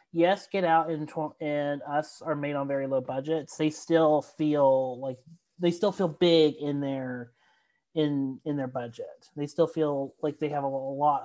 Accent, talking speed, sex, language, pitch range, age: American, 190 wpm, male, English, 140-175 Hz, 30-49